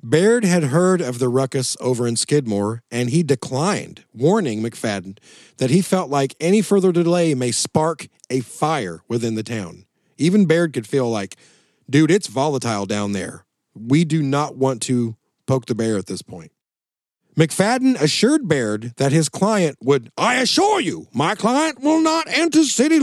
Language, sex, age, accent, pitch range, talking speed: English, male, 40-59, American, 125-185 Hz, 170 wpm